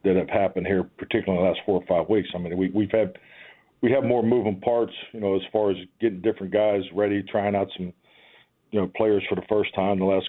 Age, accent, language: 50-69, American, English